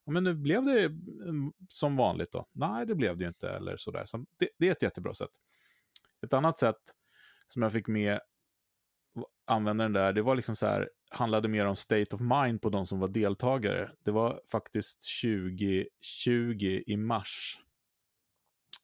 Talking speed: 170 wpm